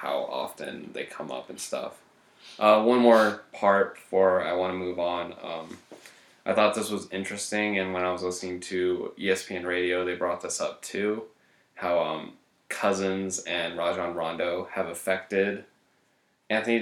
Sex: male